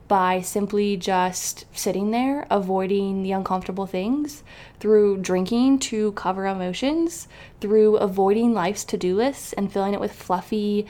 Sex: female